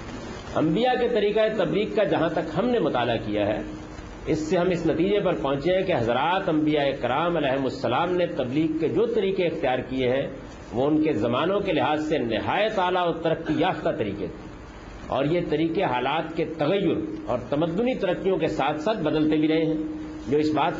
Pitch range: 140-185 Hz